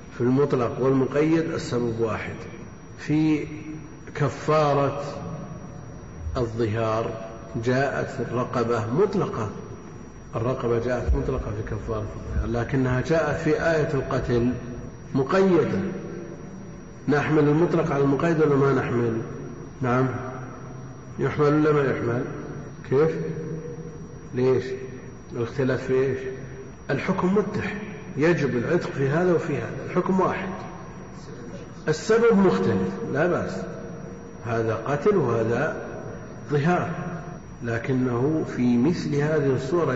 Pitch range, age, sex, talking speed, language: 120-155 Hz, 50-69, male, 95 wpm, Arabic